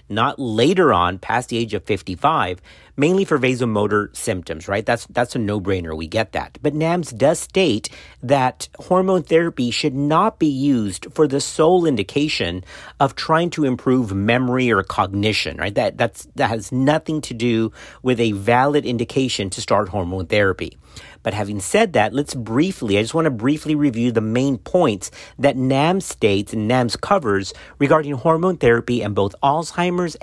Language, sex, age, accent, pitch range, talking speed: English, male, 40-59, American, 105-155 Hz, 170 wpm